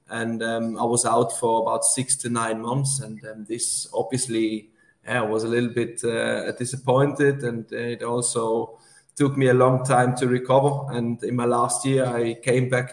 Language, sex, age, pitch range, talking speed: English, male, 20-39, 120-135 Hz, 190 wpm